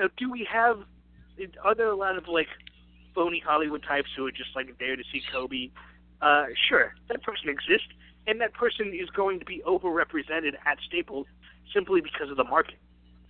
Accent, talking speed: American, 185 wpm